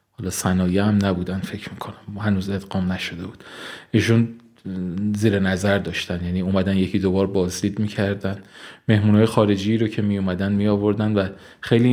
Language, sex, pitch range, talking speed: Persian, male, 105-125 Hz, 140 wpm